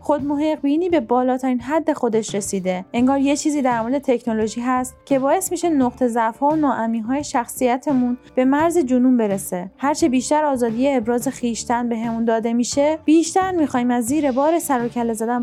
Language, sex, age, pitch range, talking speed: Persian, female, 30-49, 230-295 Hz, 165 wpm